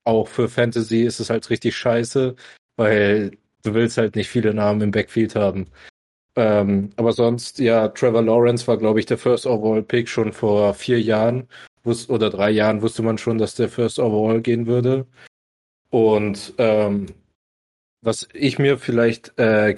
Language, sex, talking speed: German, male, 165 wpm